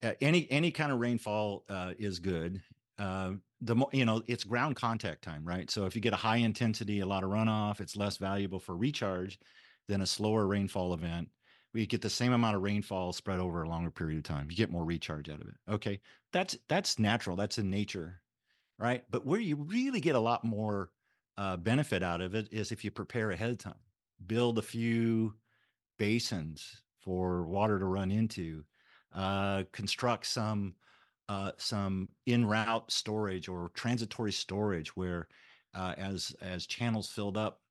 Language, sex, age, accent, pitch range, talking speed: English, male, 50-69, American, 95-115 Hz, 185 wpm